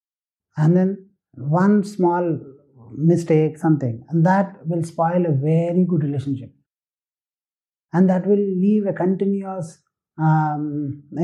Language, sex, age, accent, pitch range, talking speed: English, male, 30-49, Indian, 150-205 Hz, 115 wpm